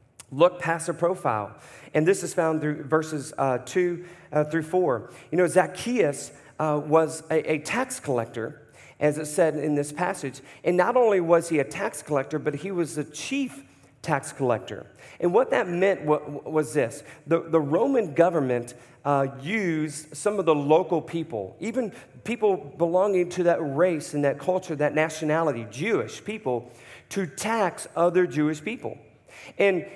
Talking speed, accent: 160 wpm, American